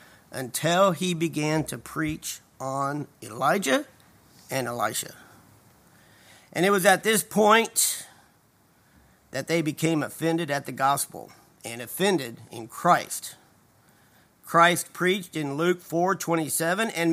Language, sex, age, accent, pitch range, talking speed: English, male, 50-69, American, 155-210 Hz, 115 wpm